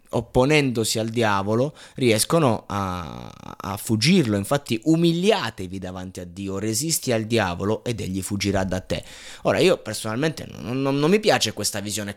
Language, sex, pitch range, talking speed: Italian, male, 105-125 Hz, 150 wpm